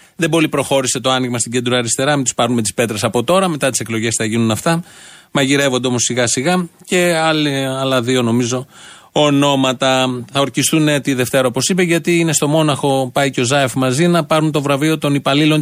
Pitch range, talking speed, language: 130-170 Hz, 195 wpm, Greek